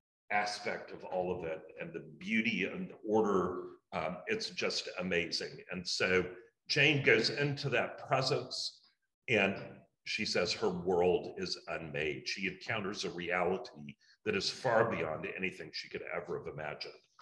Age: 40-59